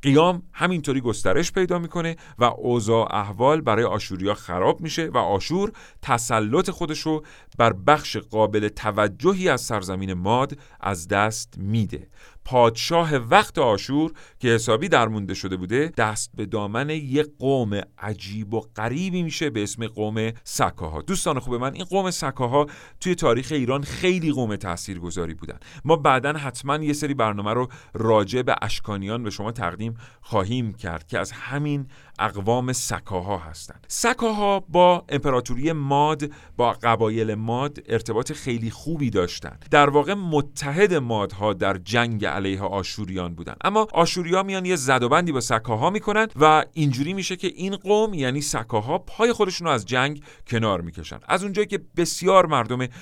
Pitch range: 105-155 Hz